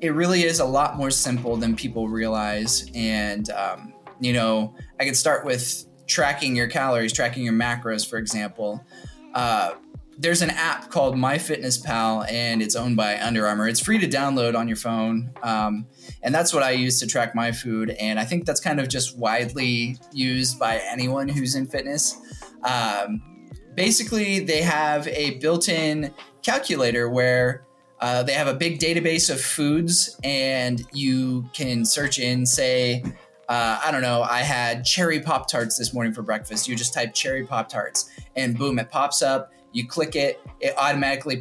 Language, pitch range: English, 115-140 Hz